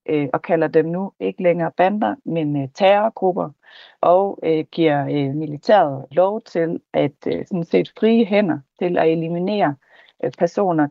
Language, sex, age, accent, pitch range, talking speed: Danish, female, 30-49, native, 150-175 Hz, 125 wpm